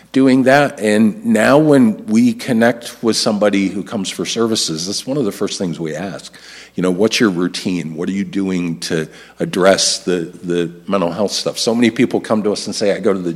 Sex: male